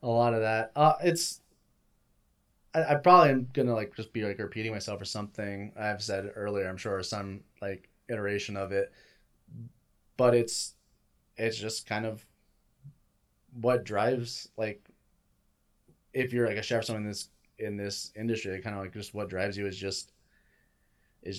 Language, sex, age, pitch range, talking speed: English, male, 20-39, 100-110 Hz, 170 wpm